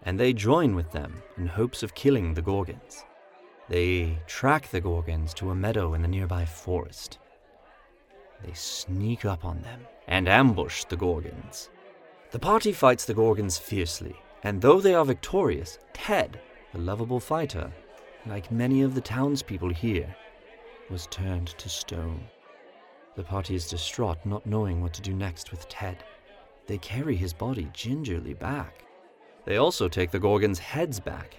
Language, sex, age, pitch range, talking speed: English, male, 30-49, 90-110 Hz, 155 wpm